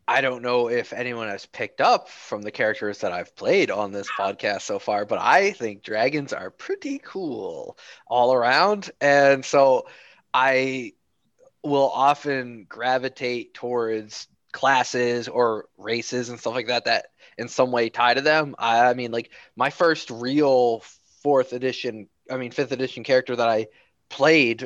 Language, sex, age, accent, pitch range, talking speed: English, male, 20-39, American, 115-130 Hz, 160 wpm